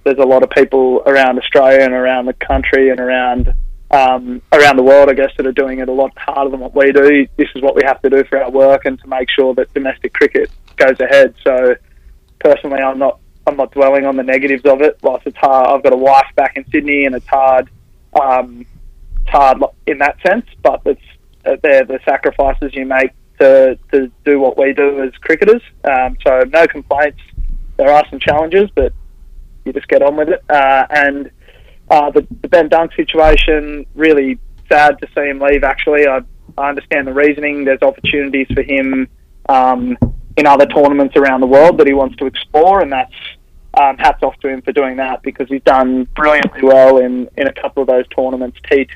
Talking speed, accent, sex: 205 wpm, Australian, male